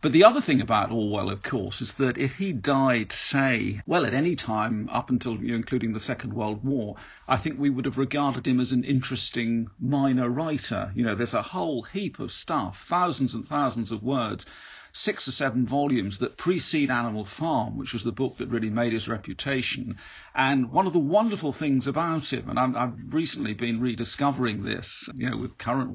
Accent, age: British, 50-69